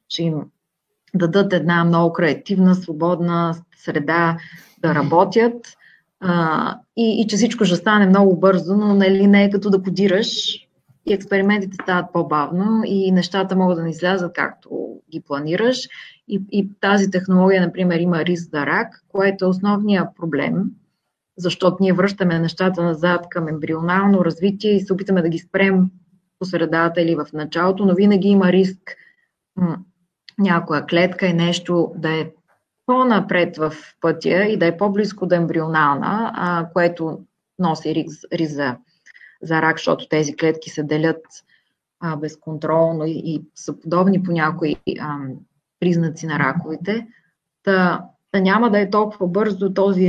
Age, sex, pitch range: 20-39, female, 165-195 Hz